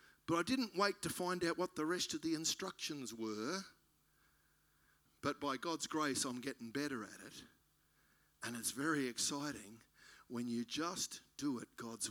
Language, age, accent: English, 50-69, Australian